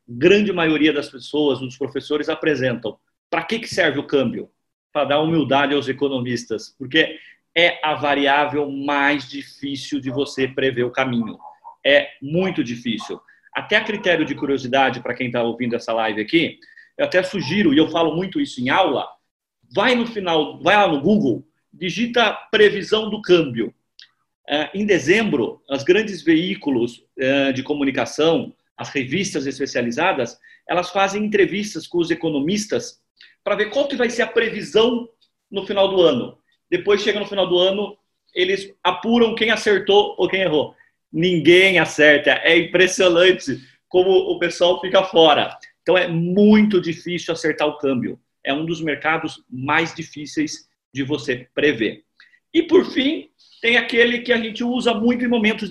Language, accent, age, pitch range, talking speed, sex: Portuguese, Brazilian, 40-59, 145-210 Hz, 150 wpm, male